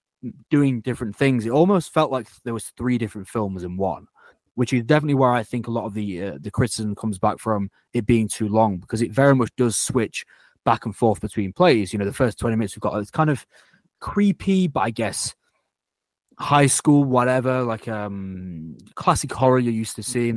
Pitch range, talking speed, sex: 105-130 Hz, 210 wpm, male